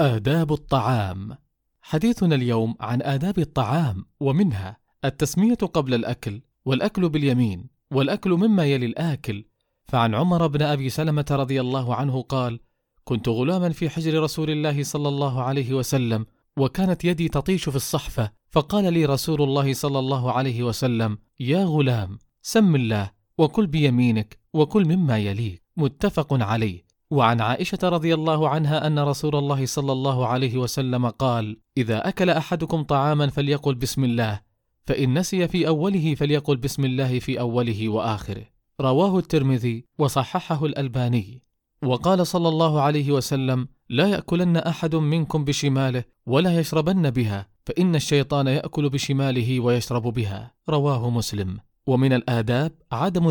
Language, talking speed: Arabic, 135 wpm